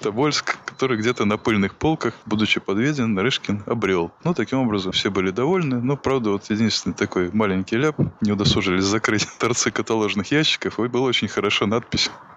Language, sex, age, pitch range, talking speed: Russian, male, 20-39, 100-140 Hz, 170 wpm